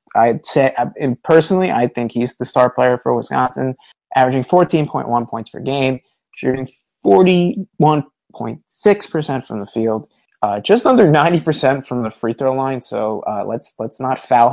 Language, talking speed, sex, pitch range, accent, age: English, 180 wpm, male, 125-155 Hz, American, 20-39